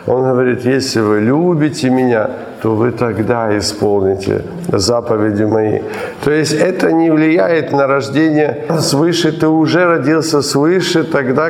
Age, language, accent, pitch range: 50-69, Ukrainian, native, 125-150 Hz